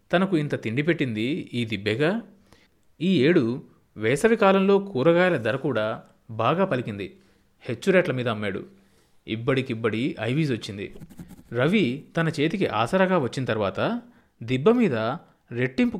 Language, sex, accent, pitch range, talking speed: Telugu, male, native, 115-160 Hz, 105 wpm